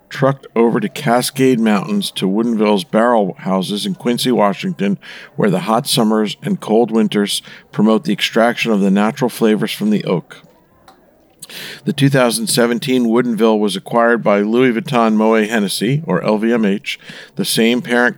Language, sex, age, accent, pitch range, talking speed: English, male, 50-69, American, 105-135 Hz, 145 wpm